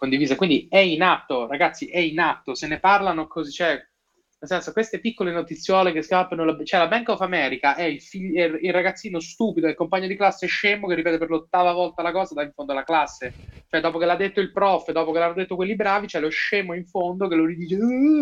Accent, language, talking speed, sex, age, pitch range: native, Italian, 235 wpm, male, 20-39, 150-195 Hz